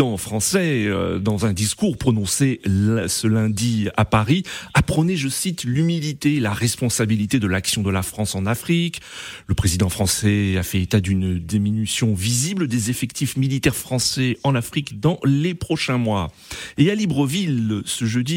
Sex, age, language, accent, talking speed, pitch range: male, 40-59, French, French, 160 wpm, 105-140 Hz